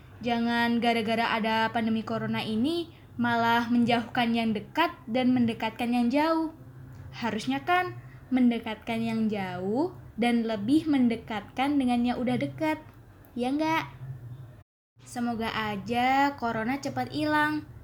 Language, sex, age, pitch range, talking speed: Indonesian, female, 20-39, 215-255 Hz, 110 wpm